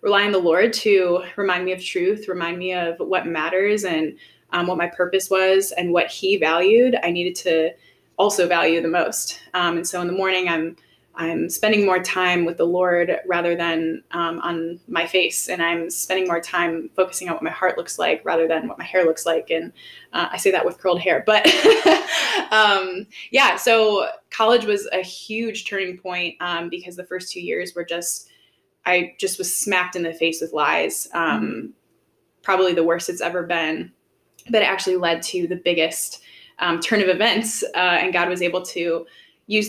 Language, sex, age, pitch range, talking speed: English, female, 20-39, 170-190 Hz, 195 wpm